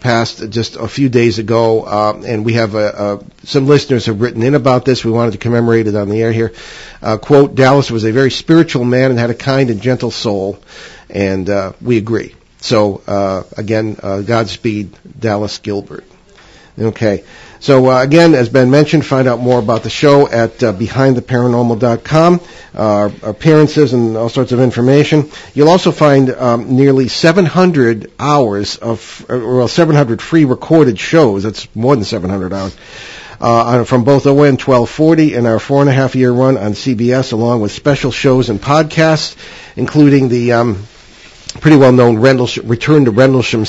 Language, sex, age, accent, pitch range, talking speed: English, male, 50-69, American, 110-140 Hz, 170 wpm